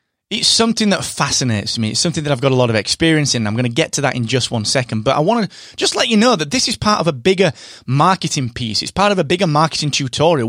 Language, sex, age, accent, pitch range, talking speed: English, male, 20-39, British, 120-175 Hz, 280 wpm